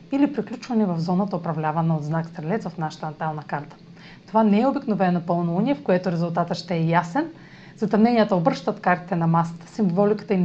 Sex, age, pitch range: female, 30-49, 170-220 Hz